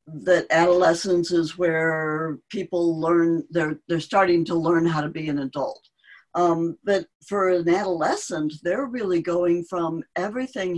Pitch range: 155-180 Hz